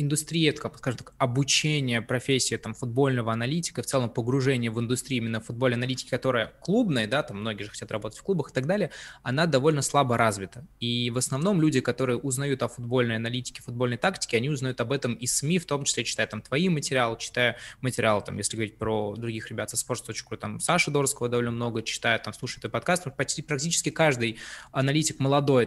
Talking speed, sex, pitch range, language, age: 190 wpm, male, 120-150 Hz, Russian, 20-39